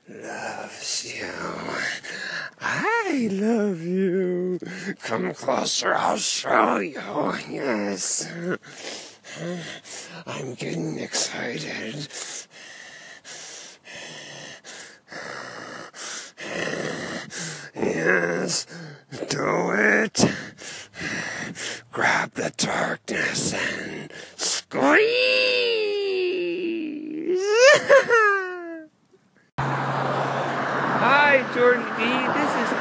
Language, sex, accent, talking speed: English, male, American, 50 wpm